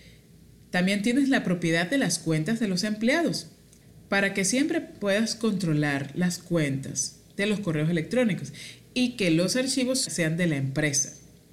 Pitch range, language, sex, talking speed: 155-215 Hz, Spanish, male, 150 wpm